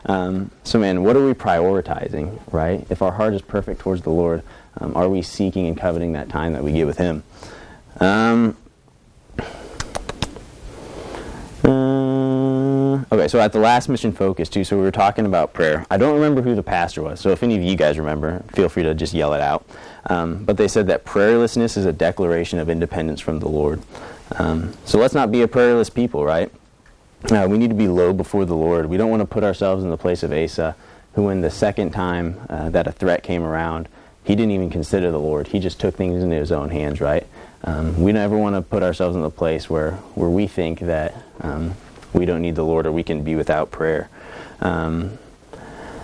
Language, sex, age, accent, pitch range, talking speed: English, male, 30-49, American, 80-100 Hz, 210 wpm